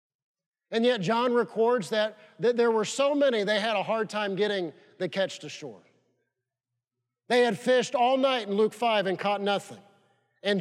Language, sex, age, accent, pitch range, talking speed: English, male, 50-69, American, 195-235 Hz, 180 wpm